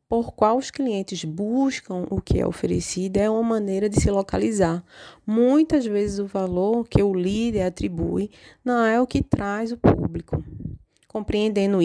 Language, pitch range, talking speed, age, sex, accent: Portuguese, 185-240 Hz, 155 wpm, 20-39, female, Brazilian